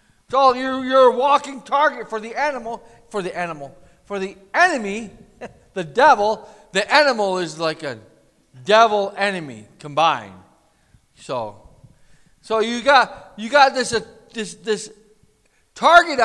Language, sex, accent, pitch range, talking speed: English, male, American, 200-290 Hz, 135 wpm